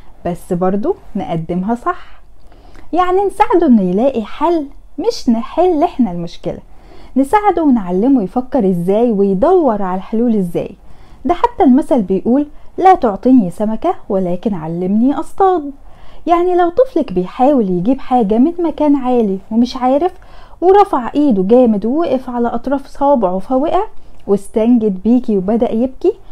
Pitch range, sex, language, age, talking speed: 205-300 Hz, female, Arabic, 10-29, 125 wpm